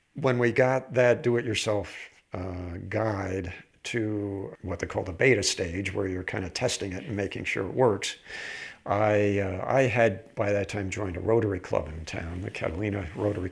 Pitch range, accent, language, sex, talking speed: 95-115 Hz, American, English, male, 180 wpm